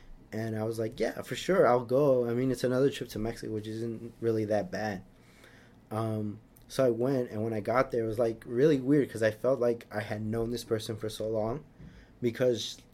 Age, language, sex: 20-39, English, male